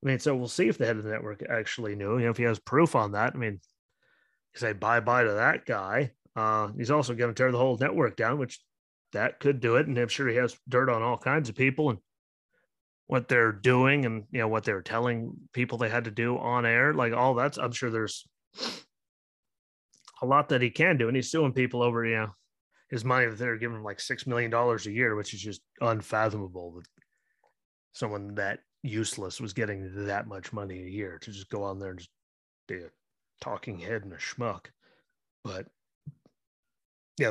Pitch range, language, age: 105-125 Hz, English, 30-49